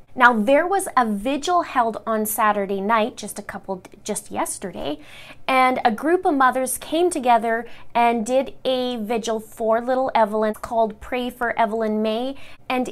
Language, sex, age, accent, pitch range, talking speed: English, female, 20-39, American, 215-255 Hz, 160 wpm